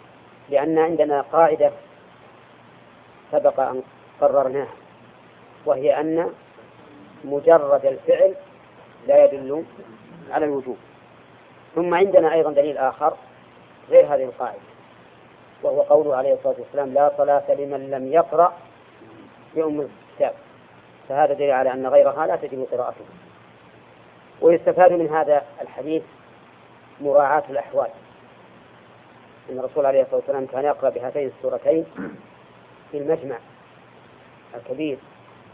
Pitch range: 135-165 Hz